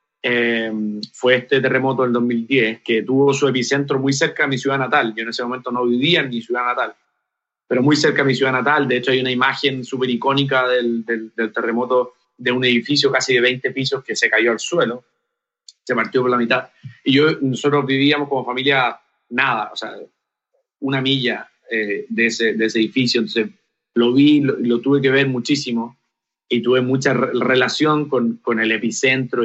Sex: male